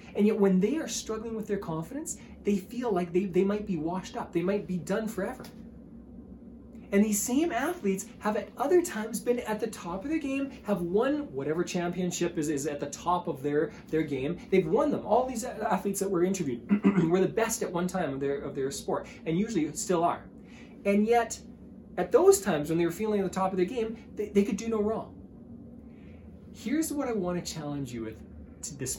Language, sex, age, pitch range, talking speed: English, male, 20-39, 170-230 Hz, 215 wpm